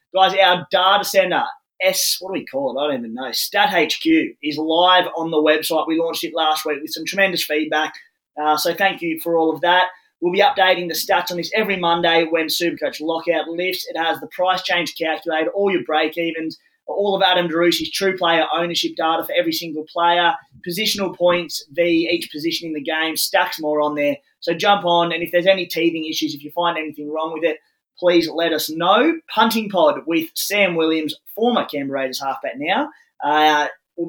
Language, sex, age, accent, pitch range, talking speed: English, male, 20-39, Australian, 155-185 Hz, 200 wpm